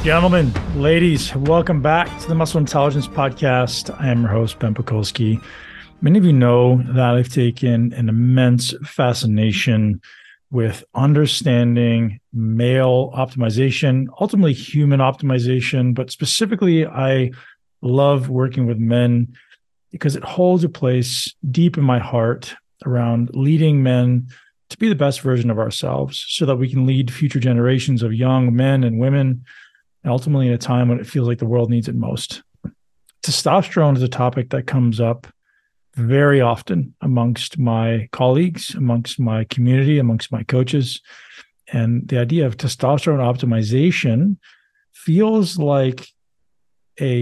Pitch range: 120-150 Hz